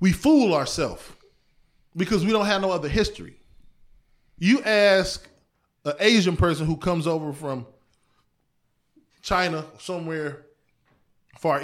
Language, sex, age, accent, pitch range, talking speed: English, male, 20-39, American, 150-200 Hz, 115 wpm